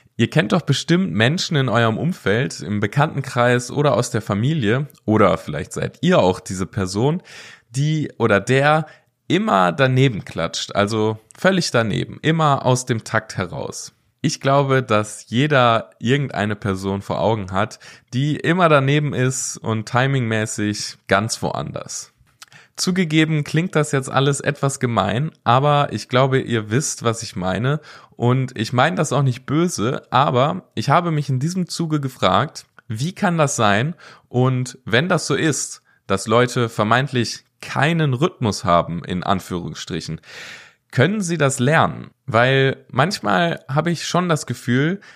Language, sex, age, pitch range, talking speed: German, male, 20-39, 110-150 Hz, 145 wpm